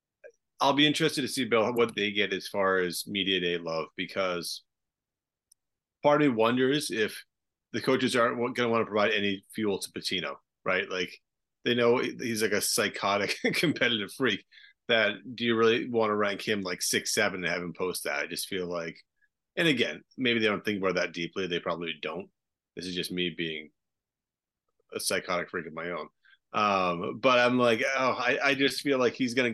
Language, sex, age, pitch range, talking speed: English, male, 30-49, 95-120 Hz, 200 wpm